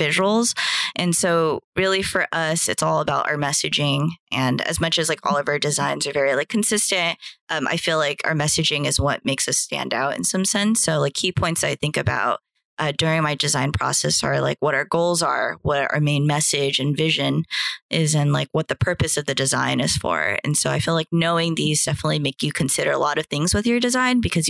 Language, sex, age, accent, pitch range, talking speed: English, female, 20-39, American, 140-170 Hz, 230 wpm